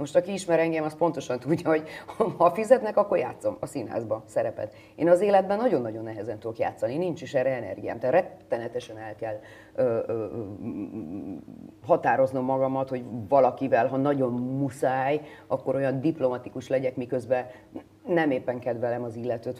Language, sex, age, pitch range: Hungarian, female, 30-49, 125-170 Hz